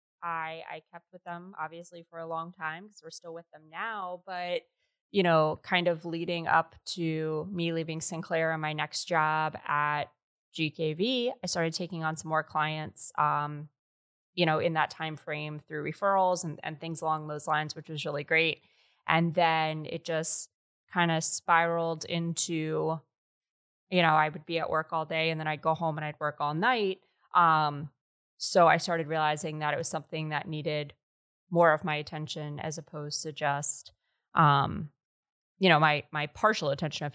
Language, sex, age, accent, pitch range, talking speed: English, female, 20-39, American, 150-170 Hz, 180 wpm